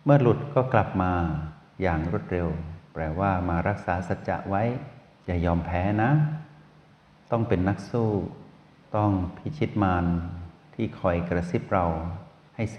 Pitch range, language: 90-110 Hz, Thai